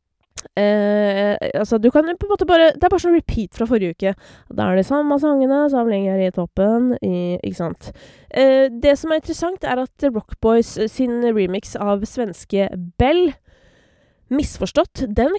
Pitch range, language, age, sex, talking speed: 190-255 Hz, English, 20-39, female, 175 wpm